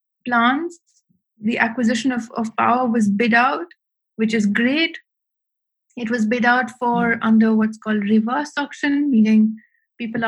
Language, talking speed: English, 140 wpm